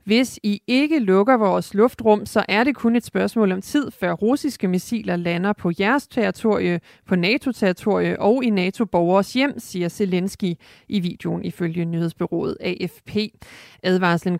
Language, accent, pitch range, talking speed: Danish, native, 180-230 Hz, 150 wpm